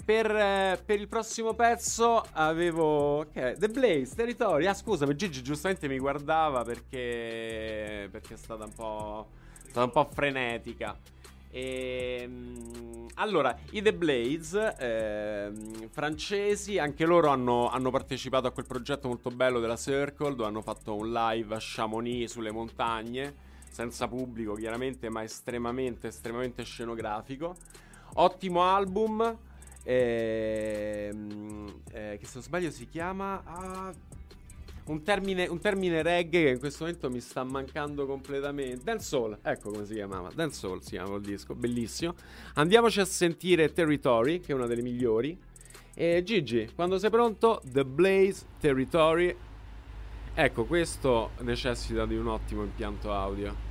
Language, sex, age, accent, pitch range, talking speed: Italian, male, 20-39, native, 110-170 Hz, 135 wpm